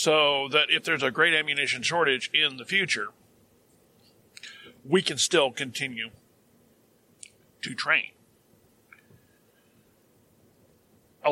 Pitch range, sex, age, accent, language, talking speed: 120-165 Hz, male, 50-69, American, English, 95 wpm